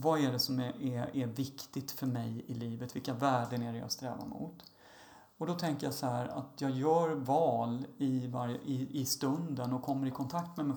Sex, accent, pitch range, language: male, native, 125-160 Hz, Swedish